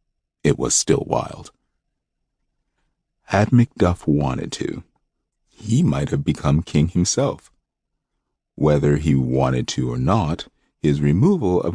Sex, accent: male, American